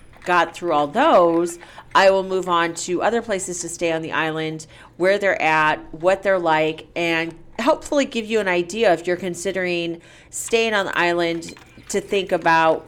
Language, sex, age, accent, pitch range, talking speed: English, female, 40-59, American, 170-205 Hz, 175 wpm